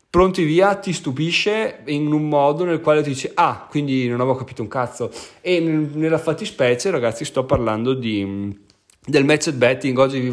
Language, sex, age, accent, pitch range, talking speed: Italian, male, 30-49, native, 125-160 Hz, 180 wpm